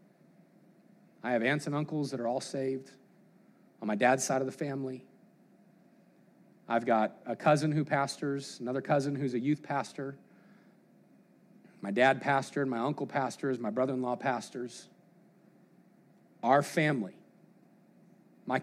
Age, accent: 40-59, American